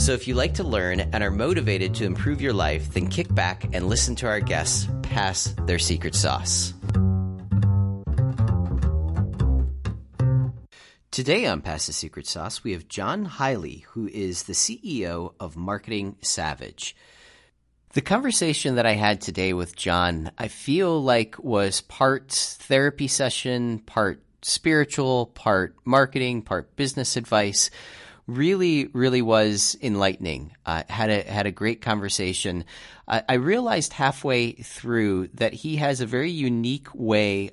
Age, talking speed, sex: 30-49, 140 wpm, male